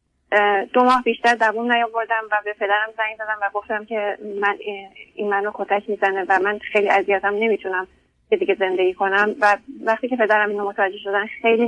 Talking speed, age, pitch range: 180 wpm, 30-49, 195-220 Hz